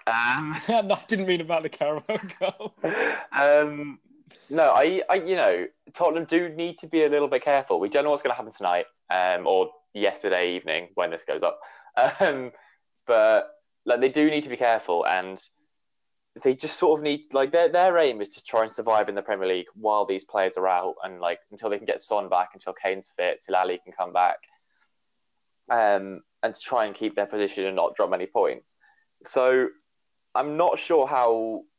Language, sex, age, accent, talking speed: English, male, 20-39, British, 195 wpm